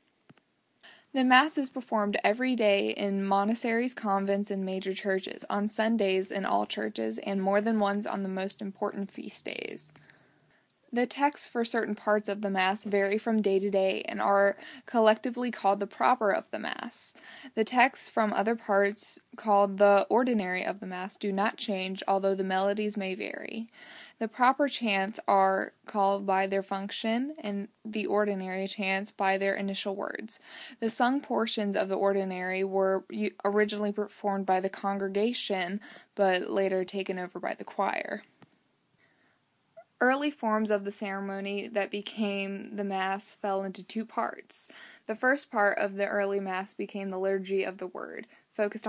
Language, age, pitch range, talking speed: English, 20-39, 195-225 Hz, 160 wpm